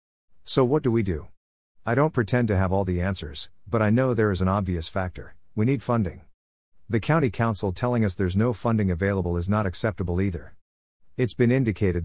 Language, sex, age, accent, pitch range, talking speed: English, male, 50-69, American, 90-115 Hz, 200 wpm